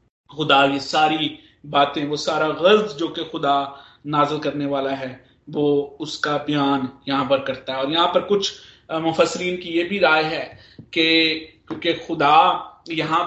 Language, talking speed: Hindi, 160 wpm